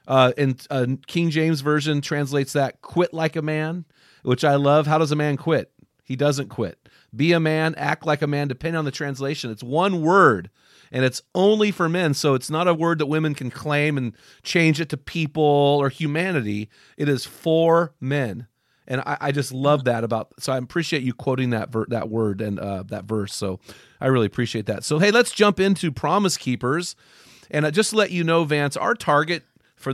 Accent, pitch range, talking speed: American, 130-165 Hz, 210 wpm